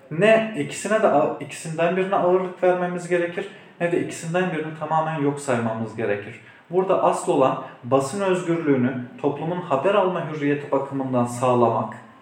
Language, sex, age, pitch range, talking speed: Turkish, male, 40-59, 135-175 Hz, 135 wpm